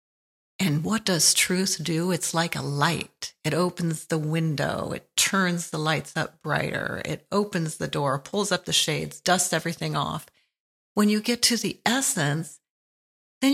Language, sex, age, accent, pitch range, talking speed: English, female, 40-59, American, 165-220 Hz, 165 wpm